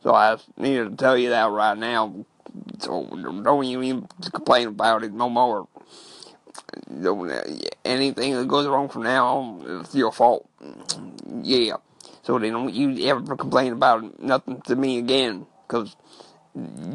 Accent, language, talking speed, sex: American, English, 150 wpm, male